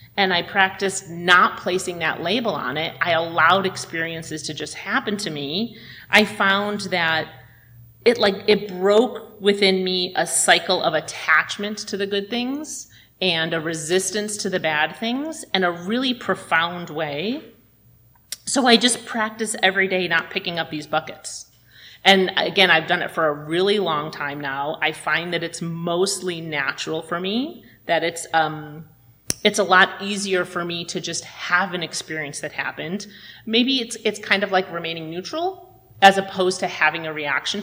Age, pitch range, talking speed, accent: 30-49, 155-205 Hz, 170 wpm, American